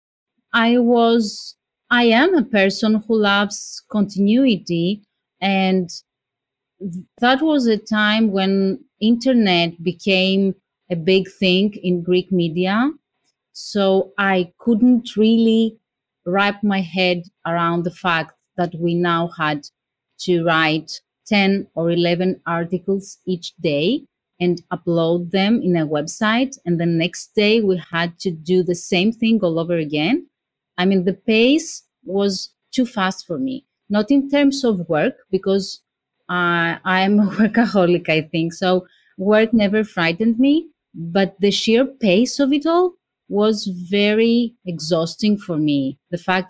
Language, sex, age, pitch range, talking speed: English, female, 30-49, 175-225 Hz, 135 wpm